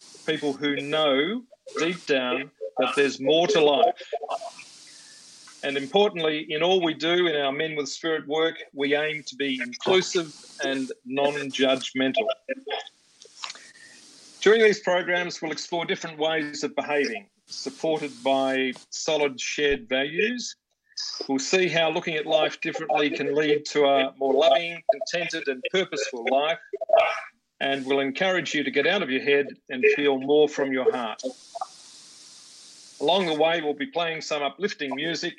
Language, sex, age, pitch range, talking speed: English, male, 40-59, 140-190 Hz, 145 wpm